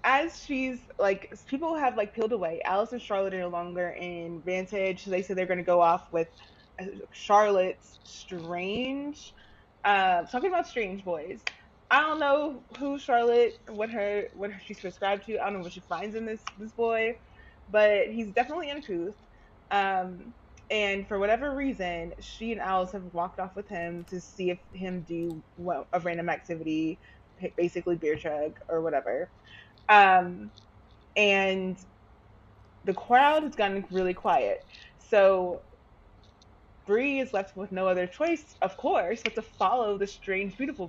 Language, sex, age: English, female, 20-39